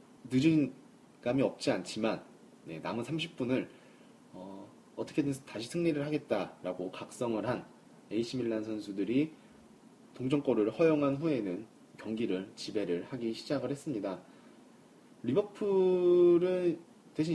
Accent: native